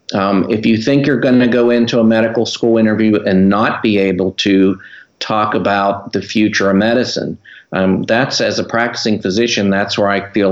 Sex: male